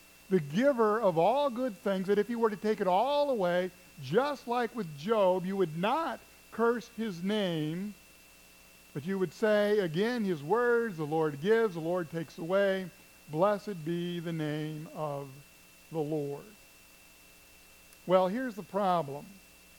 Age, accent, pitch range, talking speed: 50-69, American, 140-210 Hz, 150 wpm